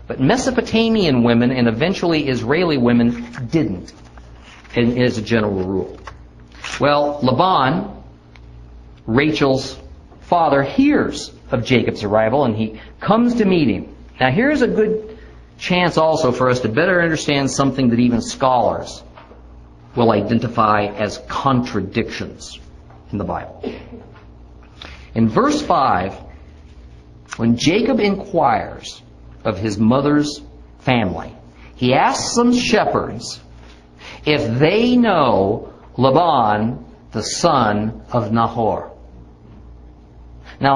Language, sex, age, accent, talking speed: English, male, 50-69, American, 105 wpm